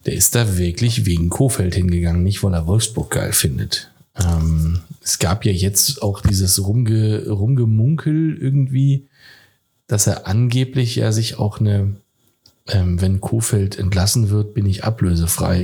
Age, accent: 40-59, German